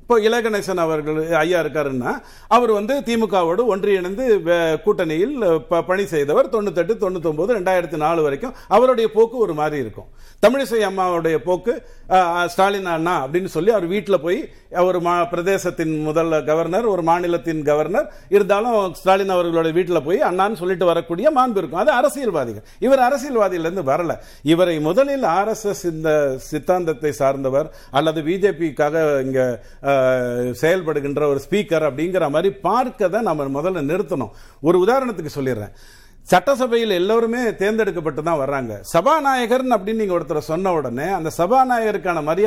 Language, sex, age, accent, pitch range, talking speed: Tamil, male, 50-69, native, 155-220 Hz, 90 wpm